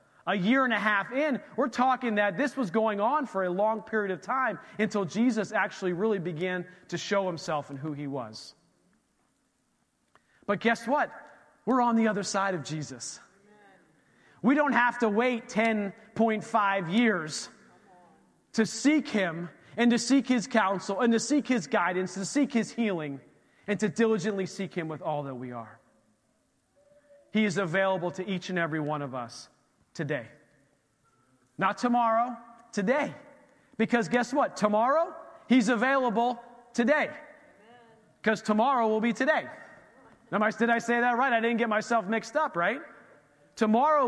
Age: 30-49